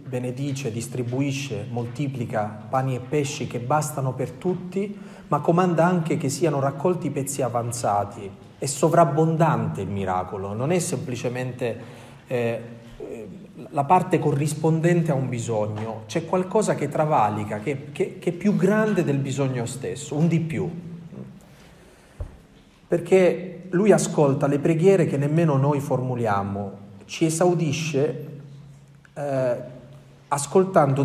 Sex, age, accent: male, 40-59, native